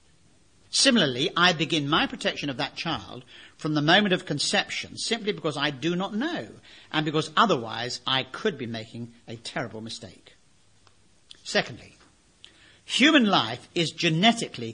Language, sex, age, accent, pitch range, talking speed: English, male, 50-69, British, 115-185 Hz, 140 wpm